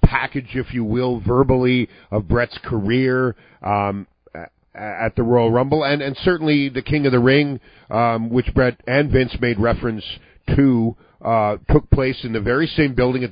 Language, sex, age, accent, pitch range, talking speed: English, male, 50-69, American, 105-135 Hz, 170 wpm